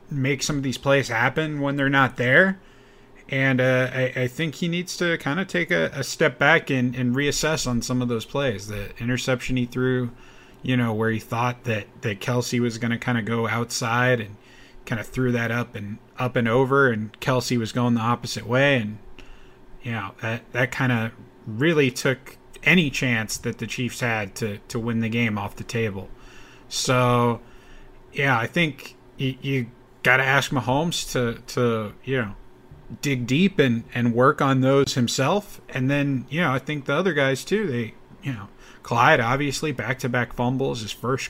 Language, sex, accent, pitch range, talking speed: English, male, American, 120-135 Hz, 195 wpm